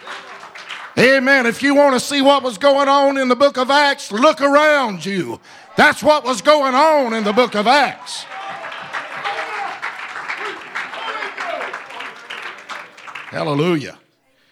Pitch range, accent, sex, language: 175-265 Hz, American, male, English